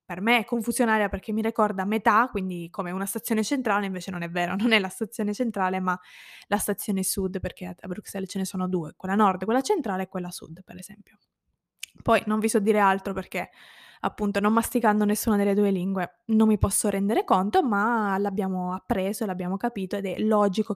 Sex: female